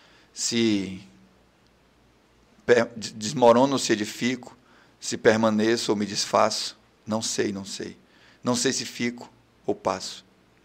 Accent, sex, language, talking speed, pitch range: Brazilian, male, Portuguese, 115 wpm, 105-125 Hz